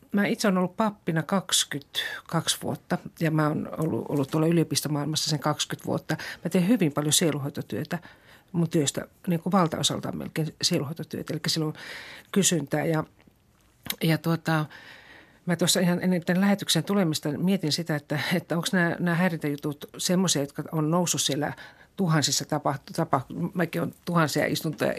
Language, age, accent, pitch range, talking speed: Finnish, 50-69, native, 150-175 Hz, 155 wpm